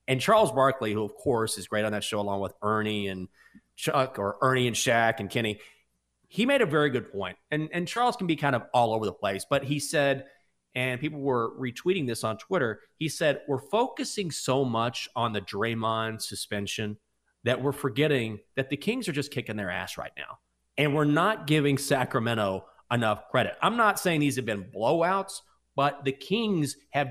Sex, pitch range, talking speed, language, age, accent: male, 120-175 Hz, 200 wpm, English, 30-49, American